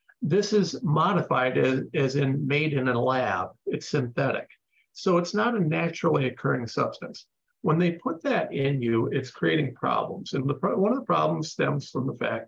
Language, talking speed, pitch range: English, 185 wpm, 125-175 Hz